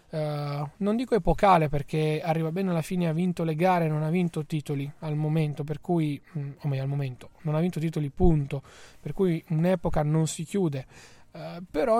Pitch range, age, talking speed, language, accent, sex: 145-170 Hz, 20-39, 180 wpm, Italian, native, male